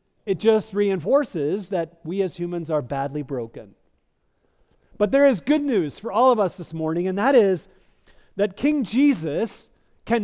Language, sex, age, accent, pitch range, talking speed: English, male, 50-69, American, 165-215 Hz, 165 wpm